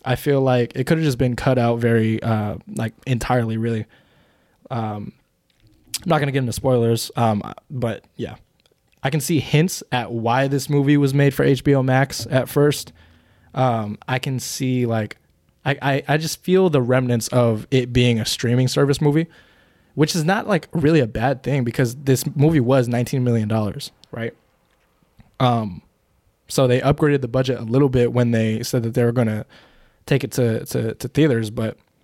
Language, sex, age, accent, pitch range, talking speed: English, male, 20-39, American, 115-145 Hz, 185 wpm